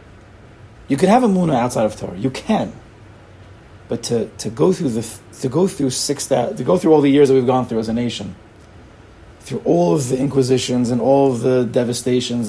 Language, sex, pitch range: English, male, 110-135 Hz